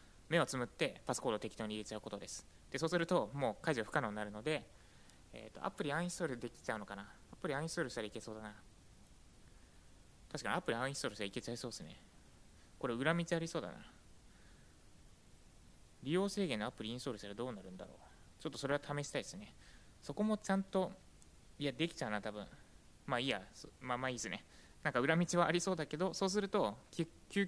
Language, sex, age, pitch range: Japanese, male, 20-39, 105-160 Hz